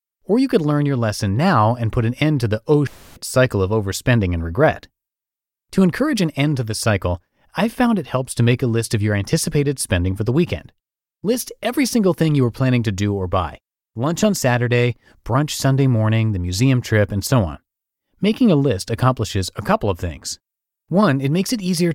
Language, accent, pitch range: English, American, 105-150 Hz